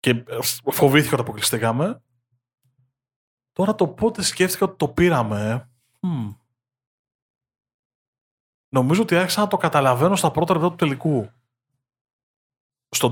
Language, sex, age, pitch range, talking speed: Greek, male, 20-39, 125-165 Hz, 110 wpm